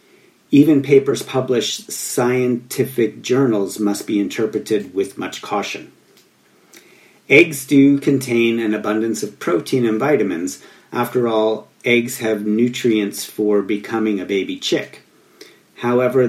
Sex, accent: male, American